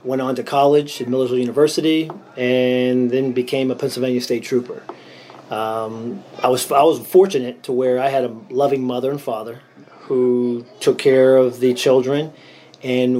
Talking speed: 165 wpm